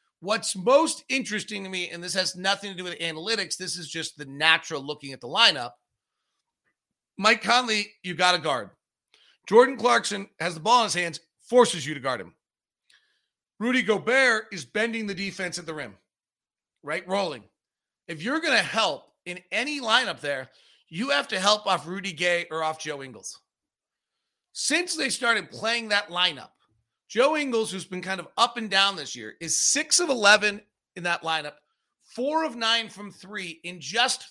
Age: 40-59